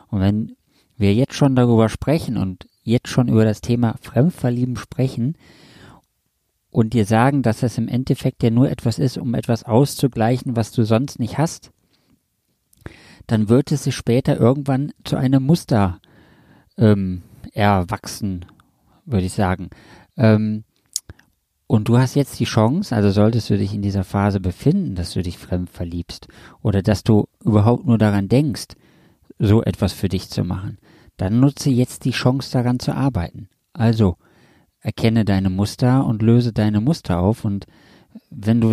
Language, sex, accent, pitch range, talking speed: German, male, German, 100-130 Hz, 155 wpm